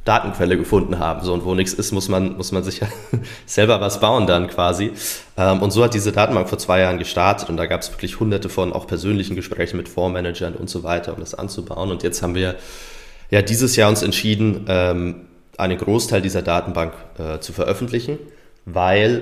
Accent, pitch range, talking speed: German, 85-100 Hz, 205 wpm